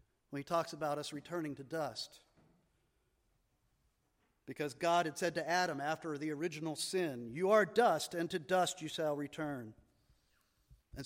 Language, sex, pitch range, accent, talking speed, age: English, male, 150-195 Hz, American, 145 wpm, 50-69